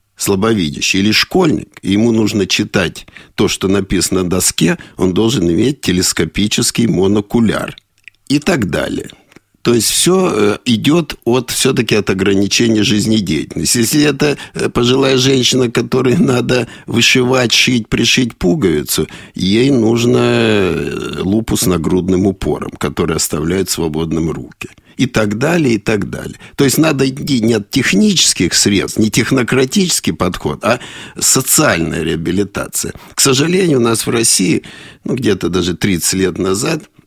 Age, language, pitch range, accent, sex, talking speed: 50-69, Russian, 95-125 Hz, native, male, 130 wpm